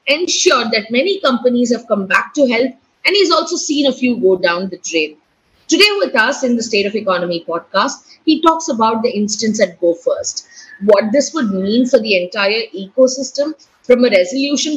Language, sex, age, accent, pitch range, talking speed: English, female, 30-49, Indian, 215-280 Hz, 190 wpm